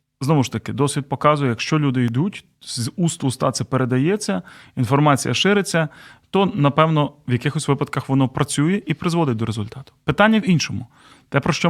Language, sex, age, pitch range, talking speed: Ukrainian, male, 30-49, 130-170 Hz, 165 wpm